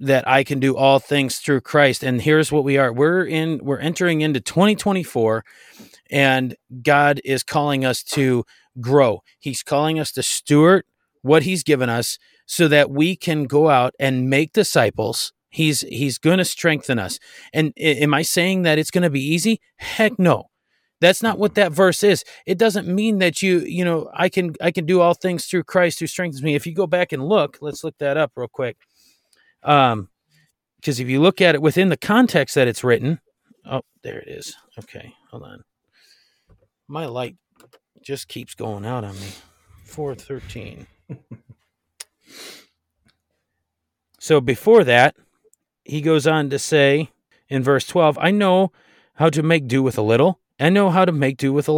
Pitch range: 130-175 Hz